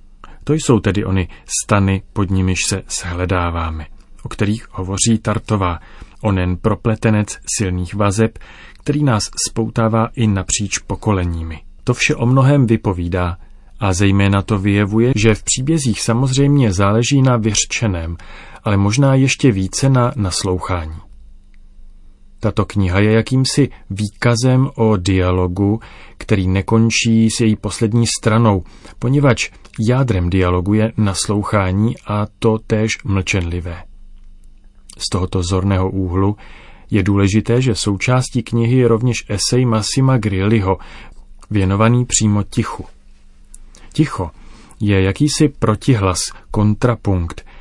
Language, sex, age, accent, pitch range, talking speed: Czech, male, 40-59, native, 95-115 Hz, 110 wpm